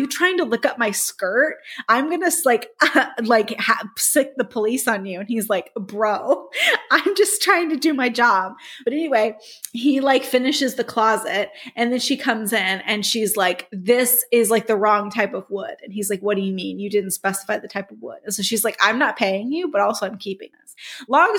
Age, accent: 20-39, American